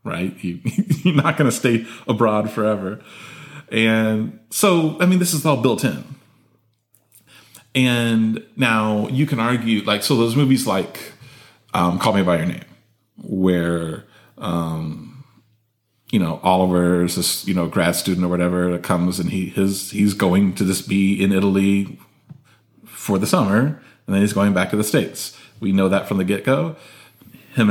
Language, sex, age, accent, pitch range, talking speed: English, male, 30-49, American, 95-125 Hz, 165 wpm